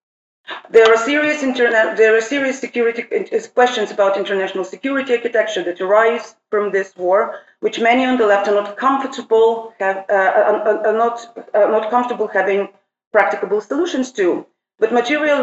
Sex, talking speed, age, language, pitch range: female, 150 wpm, 40-59, English, 190-230 Hz